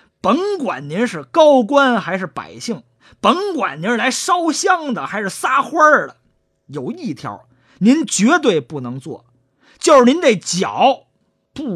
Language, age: Chinese, 30-49